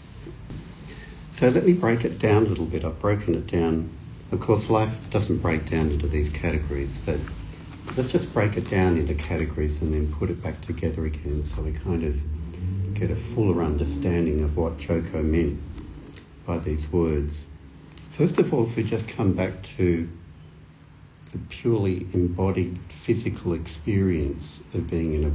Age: 60-79